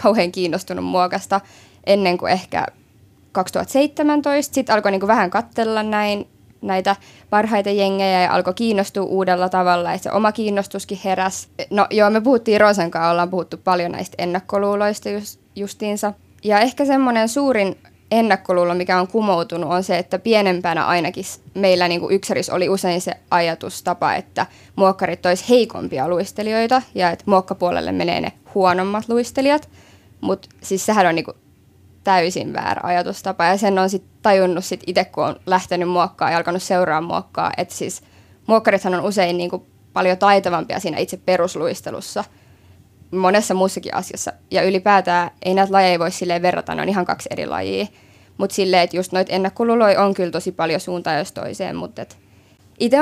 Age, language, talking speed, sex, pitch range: 20-39, Finnish, 150 wpm, female, 180-210 Hz